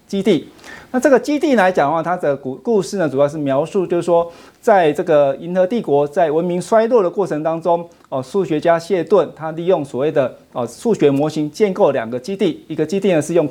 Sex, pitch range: male, 140-190 Hz